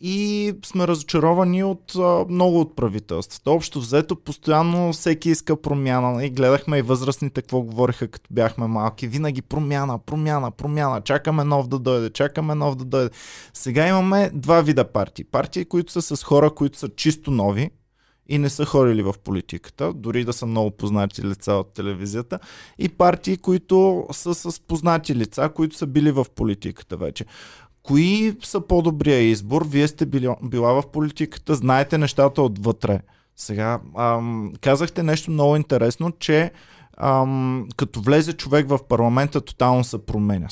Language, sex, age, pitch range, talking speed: Bulgarian, male, 20-39, 120-155 Hz, 155 wpm